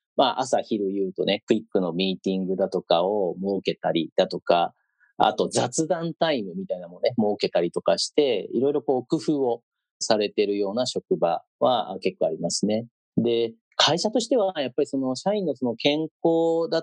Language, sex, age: Japanese, male, 40-59